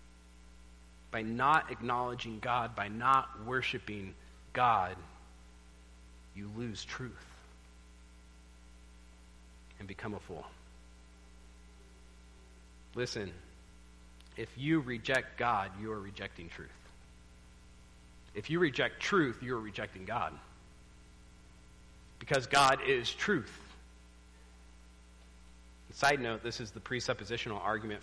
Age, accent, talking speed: 40-59, American, 90 wpm